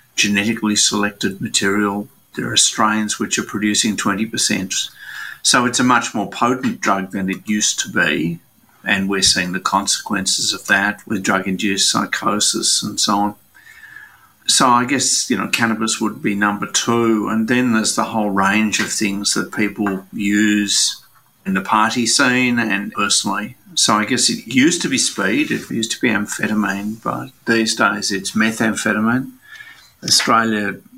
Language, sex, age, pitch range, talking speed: English, male, 50-69, 100-115 Hz, 155 wpm